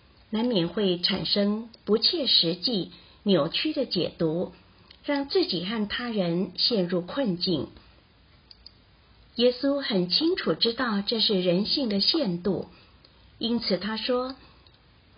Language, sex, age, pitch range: Chinese, female, 50-69, 180-245 Hz